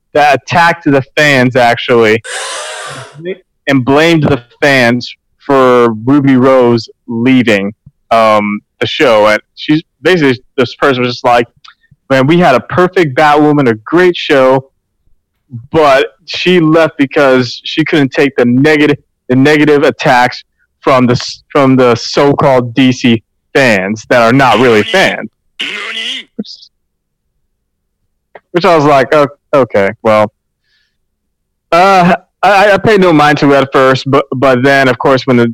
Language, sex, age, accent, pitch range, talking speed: English, male, 30-49, American, 115-150 Hz, 135 wpm